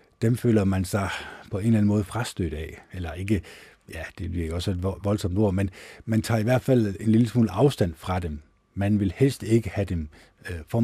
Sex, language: male, Danish